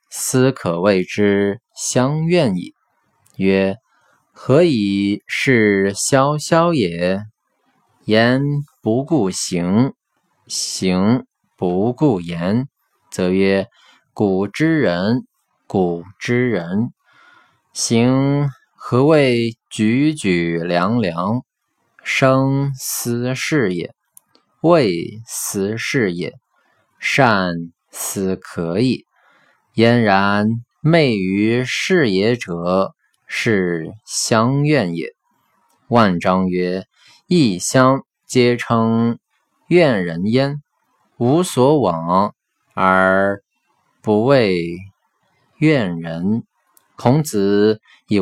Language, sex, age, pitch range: Chinese, male, 20-39, 95-135 Hz